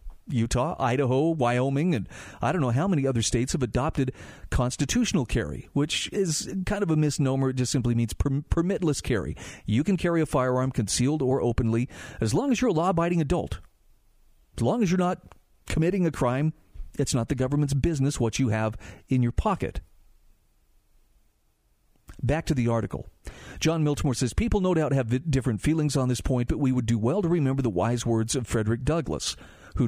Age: 40-59